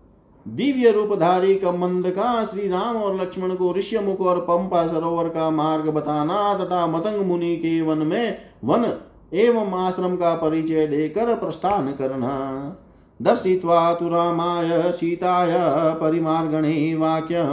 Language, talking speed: Hindi, 125 wpm